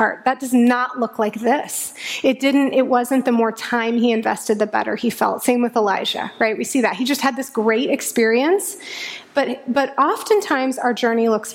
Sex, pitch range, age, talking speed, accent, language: female, 230-290 Hz, 20-39, 205 wpm, American, English